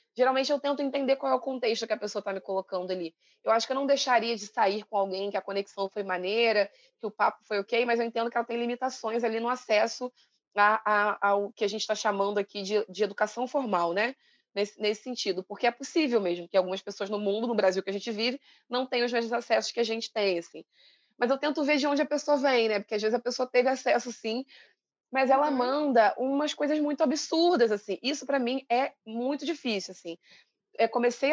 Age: 20-39